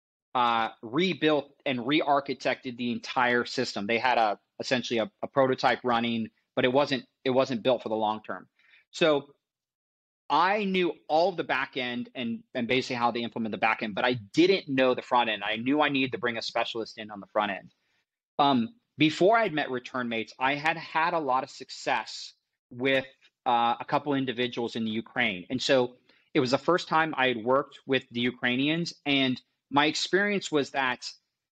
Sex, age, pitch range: male, 30-49, 120-145 Hz